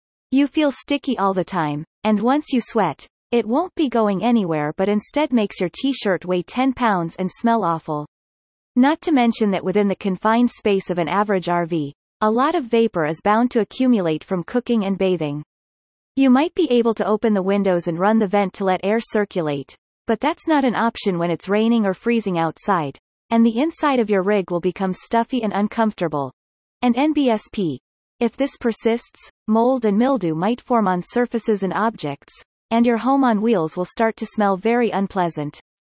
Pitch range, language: 180-245 Hz, English